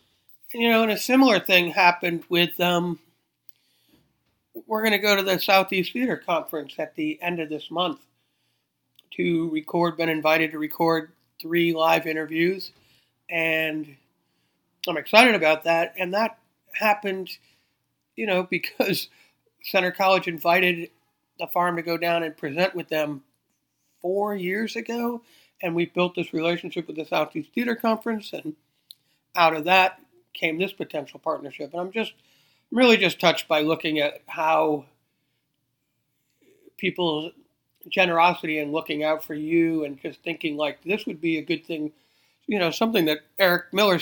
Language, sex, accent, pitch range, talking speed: English, male, American, 155-185 Hz, 150 wpm